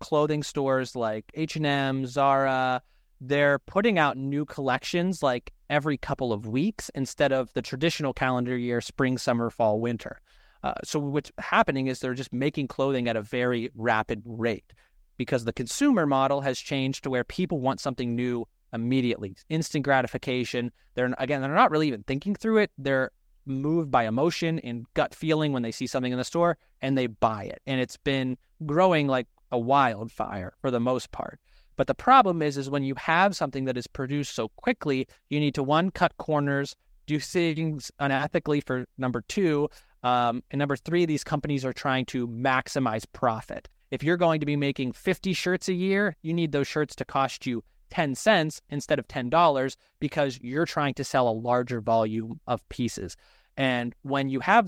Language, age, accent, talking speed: English, 30-49, American, 180 wpm